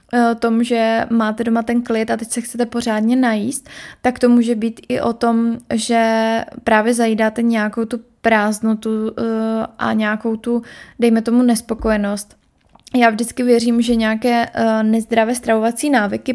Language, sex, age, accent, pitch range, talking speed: Czech, female, 20-39, native, 220-235 Hz, 145 wpm